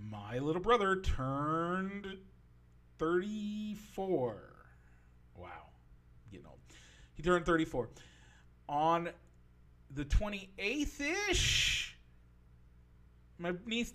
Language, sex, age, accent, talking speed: English, male, 40-59, American, 75 wpm